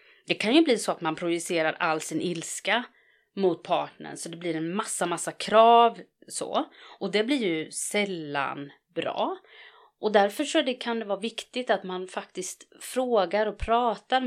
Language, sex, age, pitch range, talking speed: English, female, 30-49, 165-235 Hz, 170 wpm